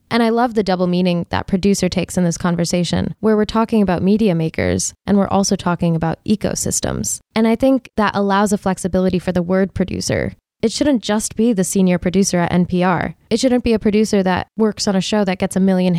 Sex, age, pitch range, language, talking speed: female, 10-29, 180-210 Hz, English, 220 wpm